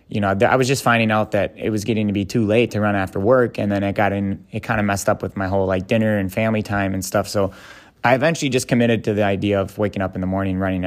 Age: 20-39